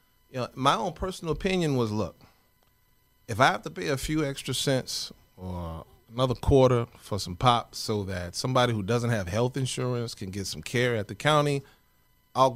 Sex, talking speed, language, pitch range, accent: male, 175 wpm, English, 110-155 Hz, American